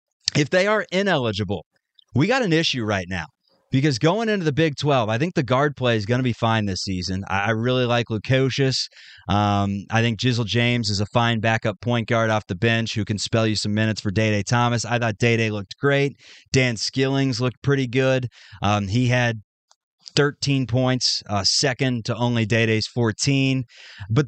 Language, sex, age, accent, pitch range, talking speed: English, male, 20-39, American, 115-160 Hz, 190 wpm